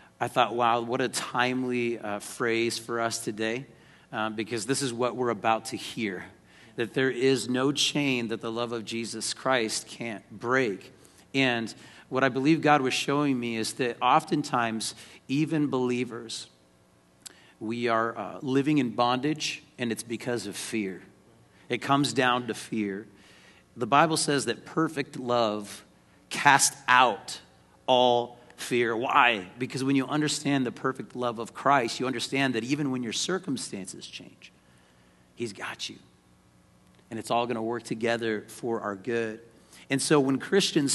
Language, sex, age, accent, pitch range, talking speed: English, male, 40-59, American, 110-140 Hz, 155 wpm